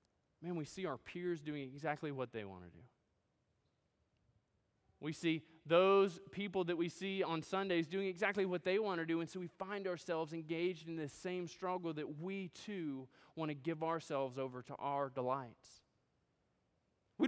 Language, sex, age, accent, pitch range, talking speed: English, male, 20-39, American, 150-200 Hz, 175 wpm